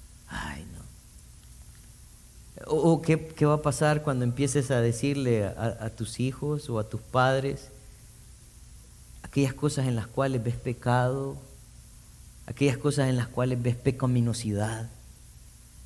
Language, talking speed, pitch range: Spanish, 130 wpm, 110-145 Hz